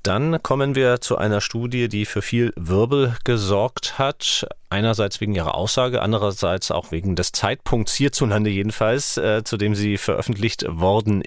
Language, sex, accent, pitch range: German, male, German, 95-120 Hz